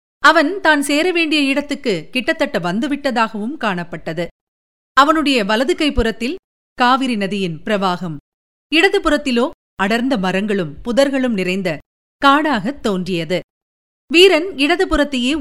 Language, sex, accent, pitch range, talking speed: Tamil, female, native, 200-290 Hz, 85 wpm